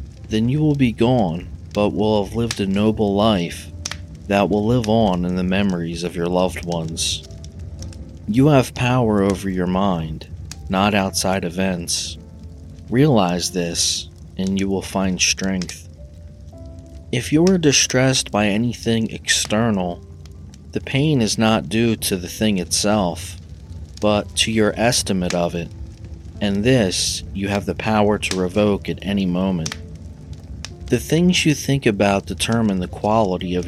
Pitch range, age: 85-110 Hz, 40-59